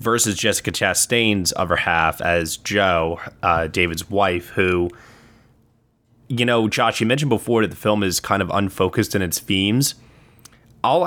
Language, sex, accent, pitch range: English, male, American, 100-120 Hz